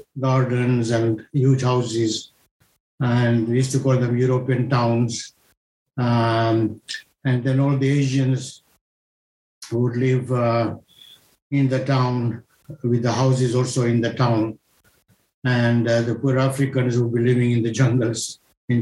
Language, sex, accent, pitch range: English, male, Indian, 120-135 Hz